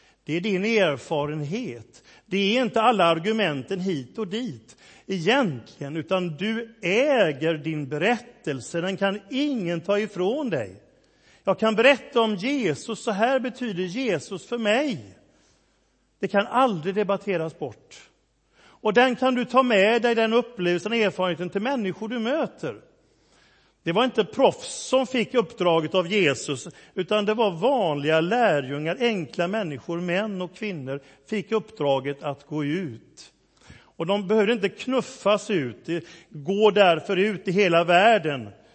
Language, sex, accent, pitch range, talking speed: Swedish, male, native, 155-220 Hz, 140 wpm